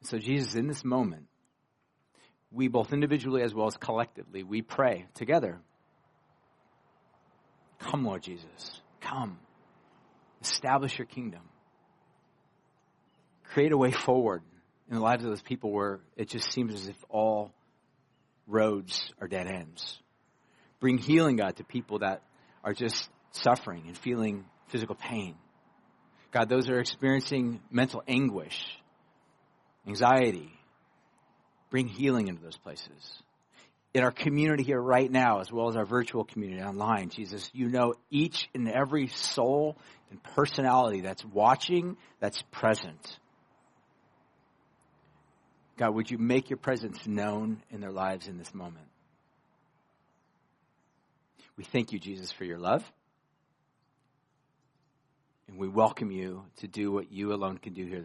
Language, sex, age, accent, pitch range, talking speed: English, male, 40-59, American, 105-135 Hz, 130 wpm